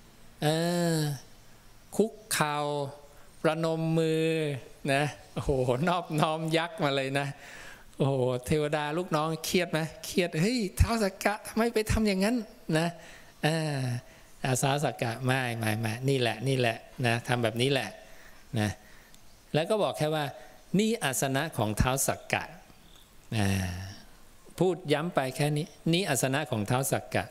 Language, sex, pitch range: English, male, 110-155 Hz